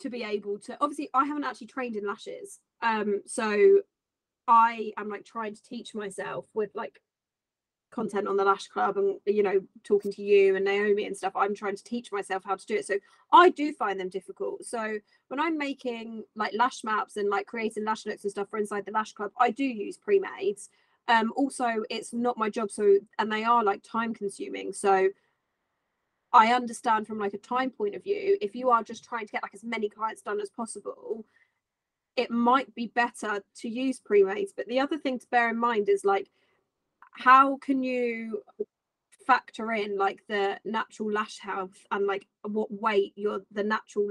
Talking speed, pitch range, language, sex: 200 wpm, 205-255 Hz, English, female